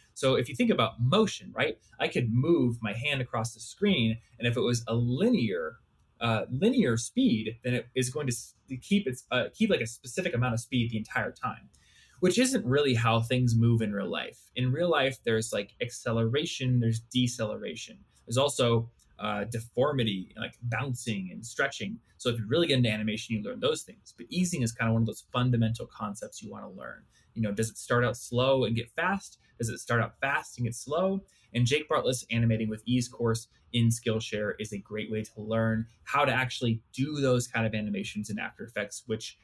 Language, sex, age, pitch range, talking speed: English, male, 20-39, 115-135 Hz, 210 wpm